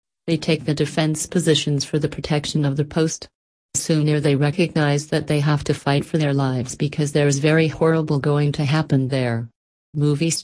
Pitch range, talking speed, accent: 140-160 Hz, 185 wpm, American